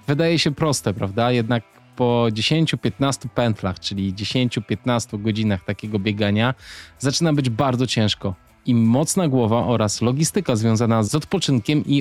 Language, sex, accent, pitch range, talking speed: Polish, male, native, 115-170 Hz, 130 wpm